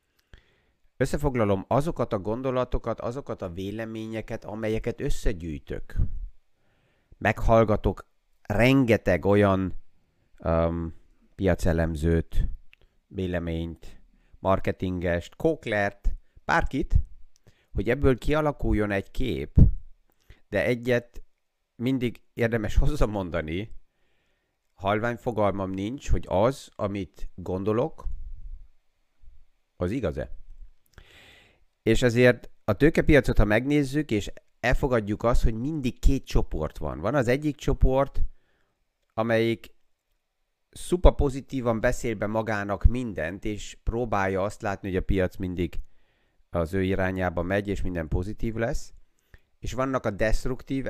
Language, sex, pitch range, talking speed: Hungarian, male, 90-115 Hz, 95 wpm